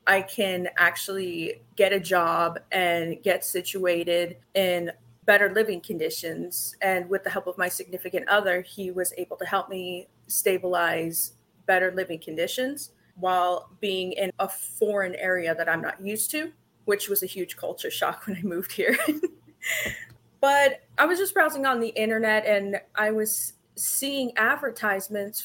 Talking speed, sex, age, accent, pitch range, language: 155 wpm, female, 20-39, American, 180-220 Hz, English